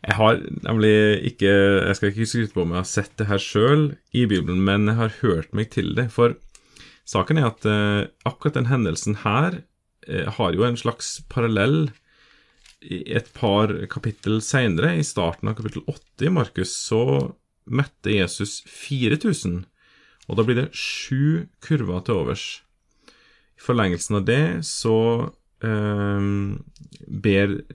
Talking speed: 140 wpm